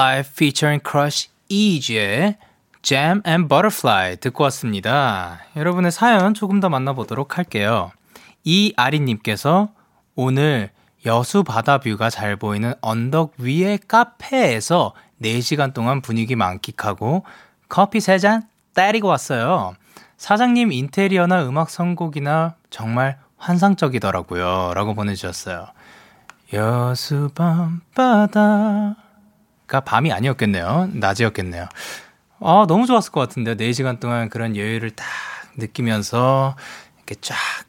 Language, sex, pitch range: Korean, male, 110-165 Hz